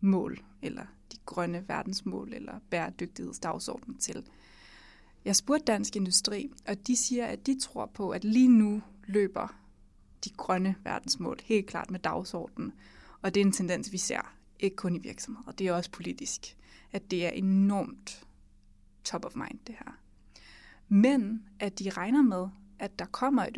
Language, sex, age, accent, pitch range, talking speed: English, female, 20-39, Danish, 185-225 Hz, 160 wpm